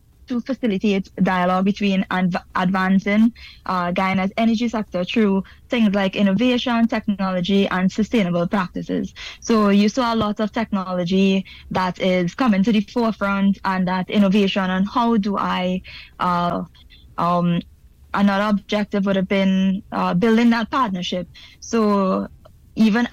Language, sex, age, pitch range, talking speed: English, female, 20-39, 190-220 Hz, 130 wpm